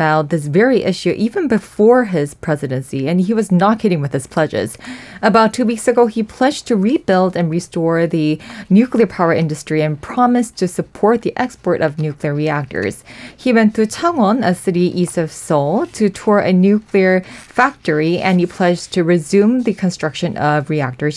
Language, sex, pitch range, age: English, female, 155-210 Hz, 20-39